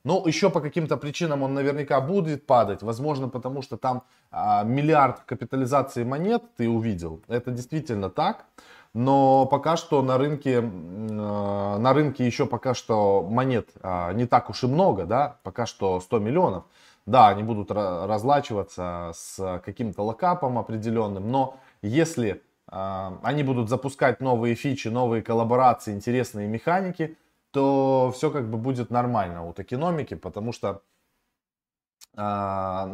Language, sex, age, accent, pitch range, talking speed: Russian, male, 20-39, native, 105-140 Hz, 130 wpm